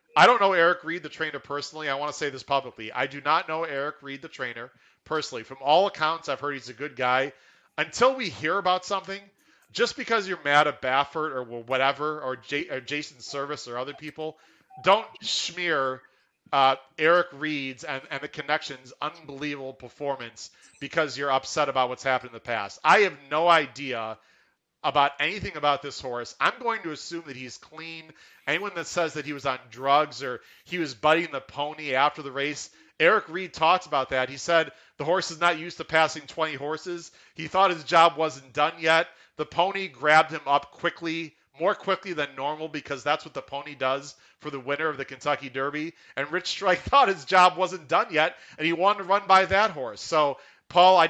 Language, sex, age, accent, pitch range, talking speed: English, male, 30-49, American, 135-165 Hz, 200 wpm